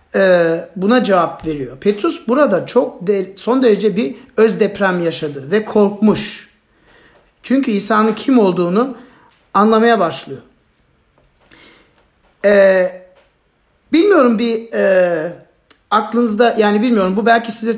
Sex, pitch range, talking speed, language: male, 185-245 Hz, 105 wpm, Turkish